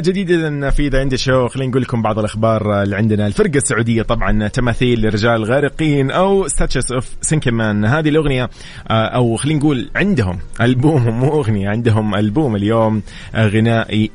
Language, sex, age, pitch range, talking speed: English, male, 30-49, 105-135 Hz, 150 wpm